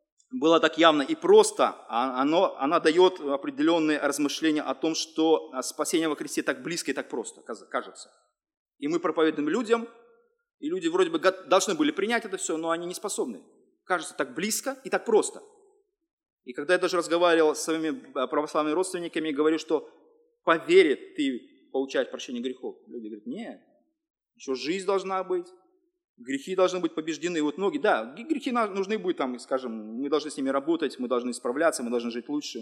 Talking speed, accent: 170 wpm, native